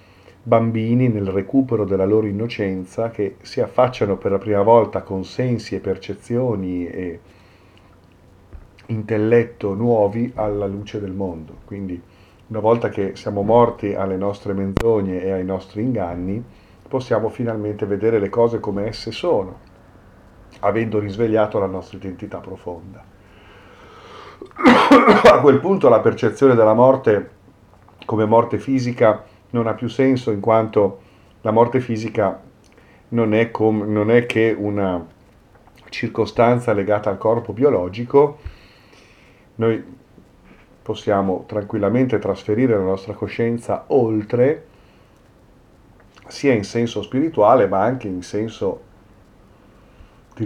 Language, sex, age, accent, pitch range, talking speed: Italian, male, 40-59, native, 95-115 Hz, 115 wpm